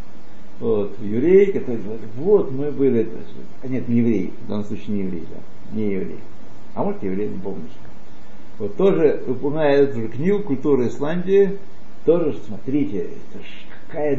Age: 60-79